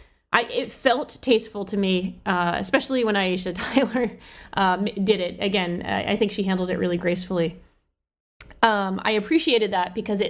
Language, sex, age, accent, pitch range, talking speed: English, female, 20-39, American, 185-240 Hz, 155 wpm